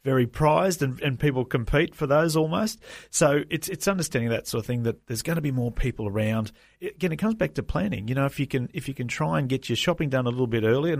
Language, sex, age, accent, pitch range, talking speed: English, male, 40-59, Australian, 115-135 Hz, 280 wpm